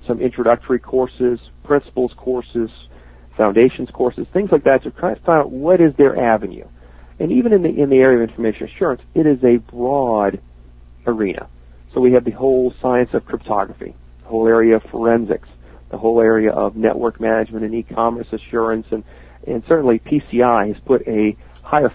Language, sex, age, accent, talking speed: English, male, 40-59, American, 185 wpm